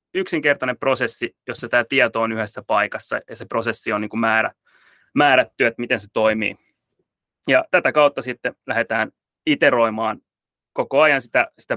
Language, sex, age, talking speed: Finnish, male, 20-39, 135 wpm